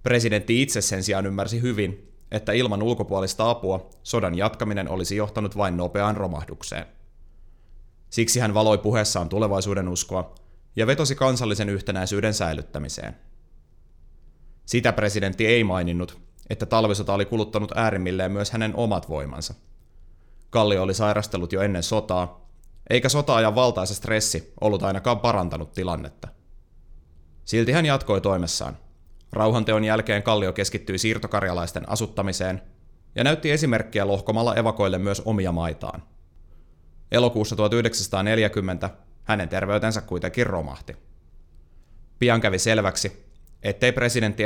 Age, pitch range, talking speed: 30-49, 85-110 Hz, 115 wpm